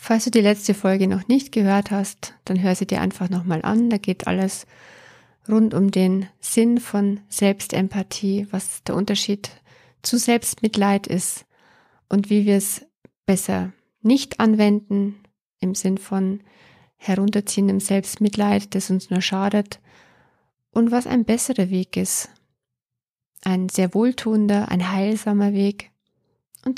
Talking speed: 135 wpm